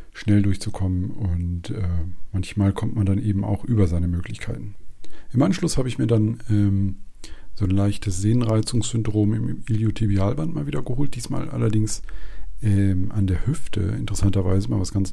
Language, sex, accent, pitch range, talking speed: German, male, German, 95-110 Hz, 155 wpm